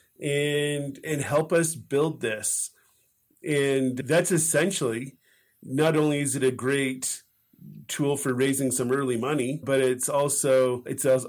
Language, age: English, 40-59